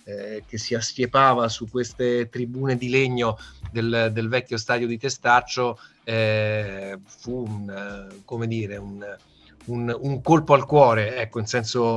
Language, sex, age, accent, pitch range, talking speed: Italian, male, 30-49, native, 115-125 Hz, 140 wpm